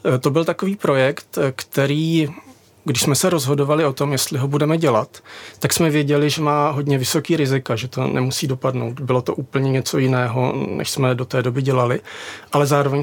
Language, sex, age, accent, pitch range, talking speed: Czech, male, 40-59, native, 130-145 Hz, 185 wpm